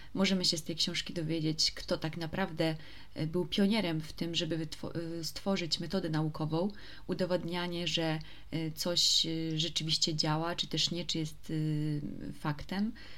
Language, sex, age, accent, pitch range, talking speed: Polish, female, 20-39, native, 155-195 Hz, 130 wpm